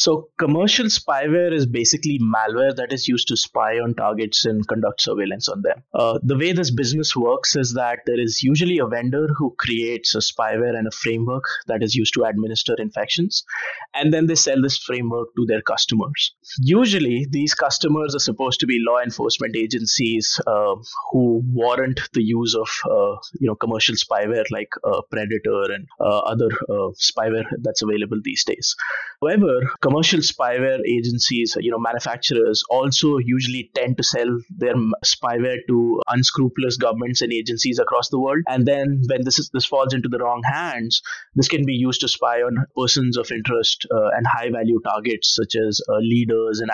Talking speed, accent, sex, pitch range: 180 wpm, Indian, male, 115-145 Hz